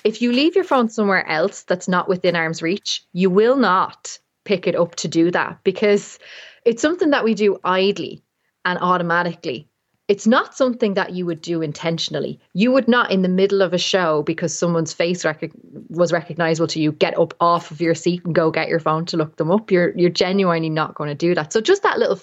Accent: Irish